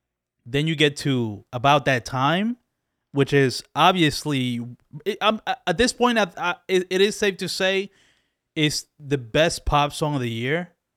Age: 20-39